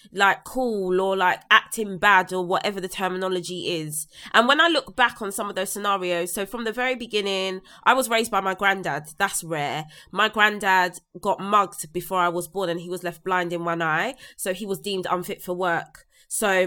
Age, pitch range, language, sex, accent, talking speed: 20-39, 180-215 Hz, English, female, British, 210 wpm